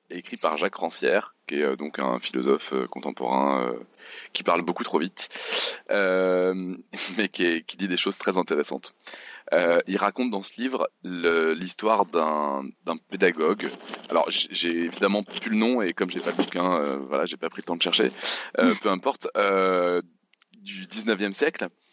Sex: male